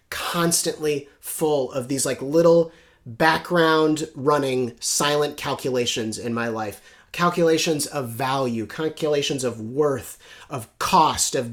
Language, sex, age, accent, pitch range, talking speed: English, male, 30-49, American, 125-170 Hz, 115 wpm